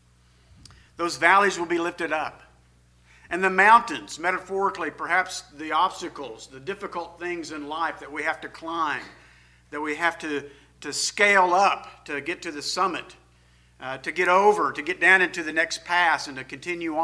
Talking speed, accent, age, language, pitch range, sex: 175 wpm, American, 50-69, English, 135-185 Hz, male